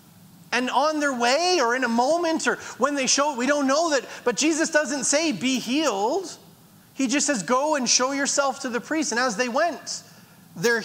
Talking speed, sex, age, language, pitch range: 205 wpm, male, 30-49, English, 235-285 Hz